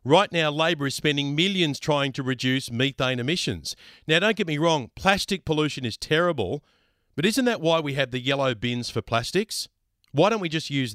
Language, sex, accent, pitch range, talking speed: English, male, Australian, 130-175 Hz, 195 wpm